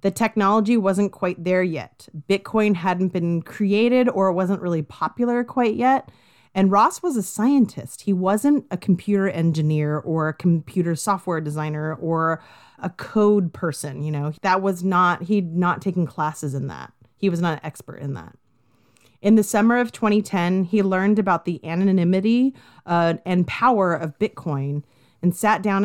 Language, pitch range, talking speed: English, 155-205 Hz, 165 wpm